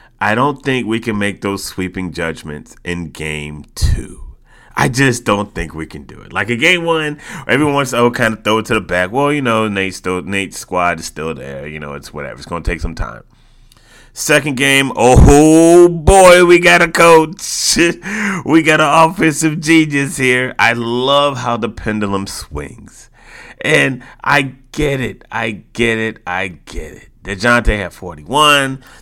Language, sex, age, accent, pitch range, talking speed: English, male, 30-49, American, 100-145 Hz, 180 wpm